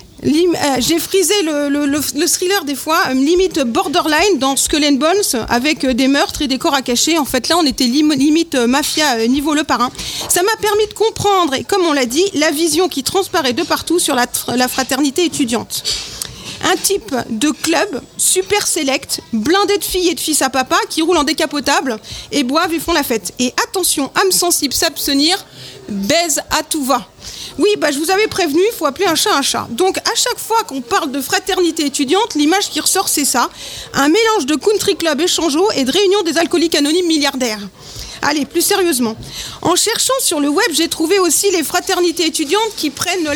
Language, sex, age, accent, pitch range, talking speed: French, female, 40-59, French, 280-365 Hz, 210 wpm